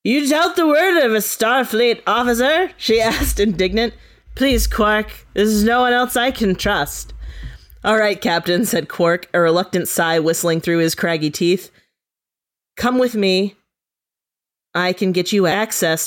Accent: American